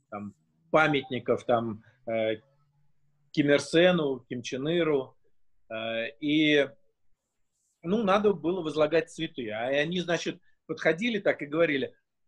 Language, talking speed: Russian, 115 wpm